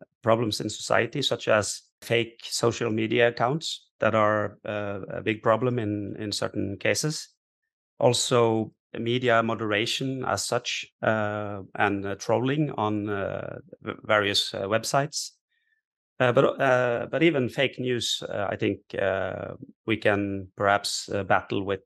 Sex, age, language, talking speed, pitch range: male, 30-49, English, 140 wpm, 100-125 Hz